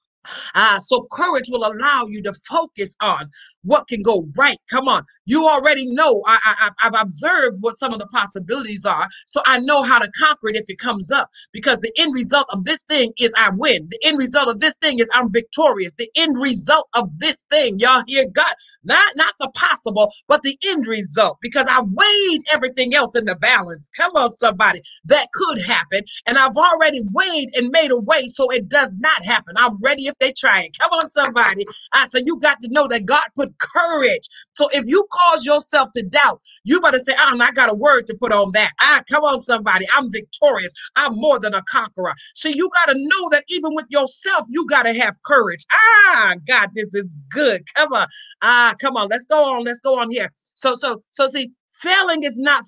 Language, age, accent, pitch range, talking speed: English, 30-49, American, 230-305 Hz, 215 wpm